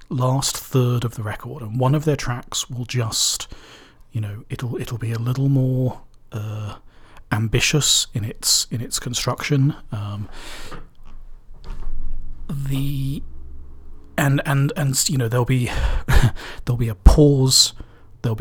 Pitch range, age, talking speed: 110-130 Hz, 40-59, 135 wpm